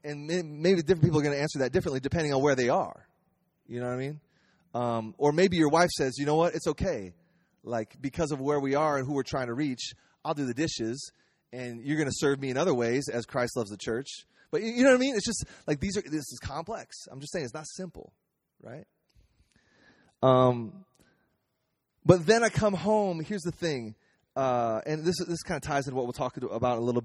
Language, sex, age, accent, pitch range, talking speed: English, male, 30-49, American, 120-170 Hz, 235 wpm